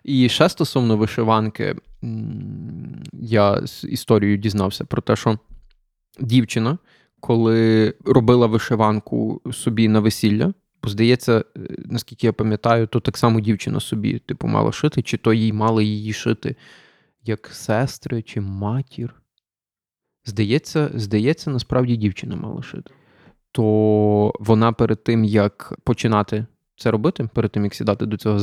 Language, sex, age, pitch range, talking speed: Ukrainian, male, 20-39, 110-130 Hz, 130 wpm